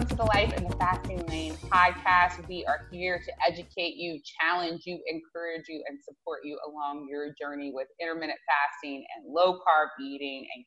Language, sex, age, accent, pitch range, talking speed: English, female, 30-49, American, 155-225 Hz, 175 wpm